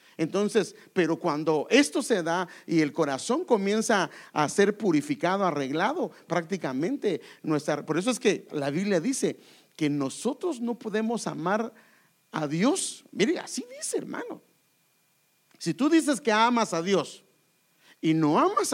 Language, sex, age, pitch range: English, male, 50-69, 175-285 Hz